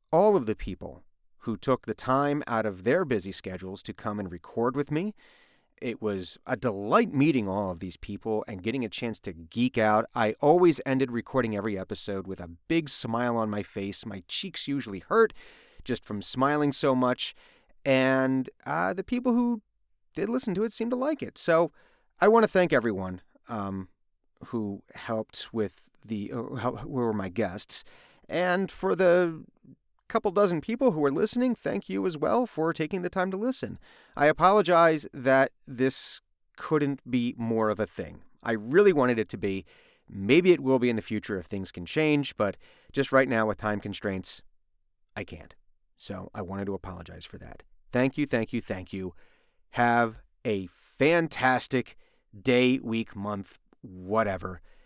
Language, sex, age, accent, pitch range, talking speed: English, male, 30-49, American, 100-150 Hz, 175 wpm